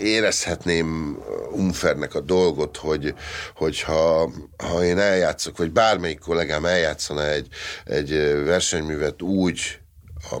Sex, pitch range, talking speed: male, 75-95 Hz, 110 wpm